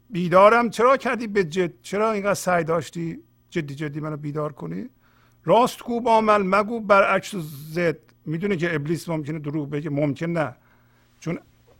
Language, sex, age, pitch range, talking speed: Persian, male, 50-69, 120-185 Hz, 140 wpm